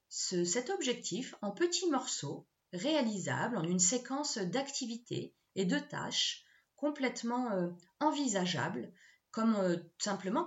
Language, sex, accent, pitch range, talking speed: French, female, French, 180-260 Hz, 105 wpm